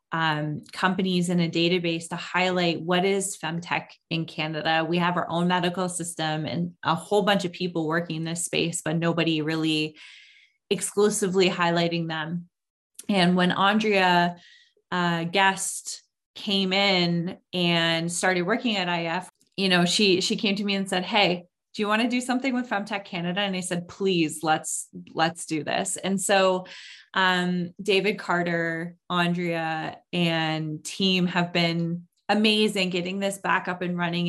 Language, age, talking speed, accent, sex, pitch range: English, 20-39, 155 wpm, American, female, 170-200 Hz